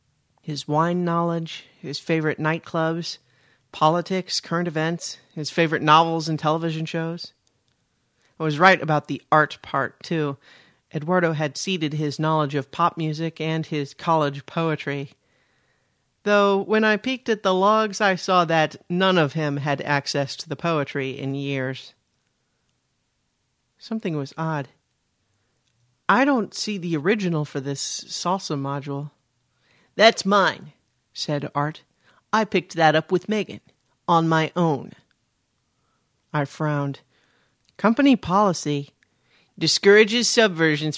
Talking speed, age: 125 wpm, 40-59